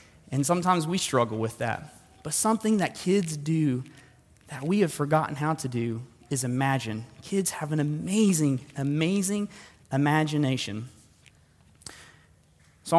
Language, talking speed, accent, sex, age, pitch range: English, 125 wpm, American, male, 20-39, 130-170 Hz